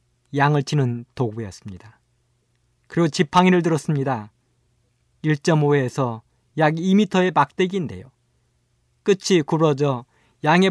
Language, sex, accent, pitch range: Korean, male, native, 120-170 Hz